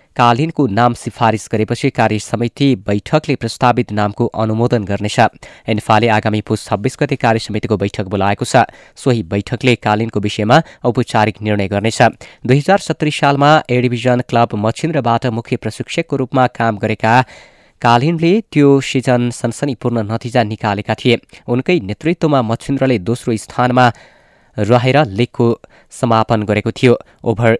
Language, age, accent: English, 20-39, Indian